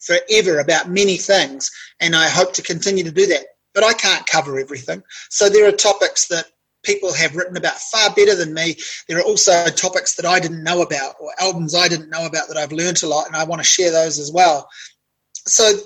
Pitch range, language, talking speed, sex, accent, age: 160-205 Hz, English, 225 wpm, male, Australian, 30-49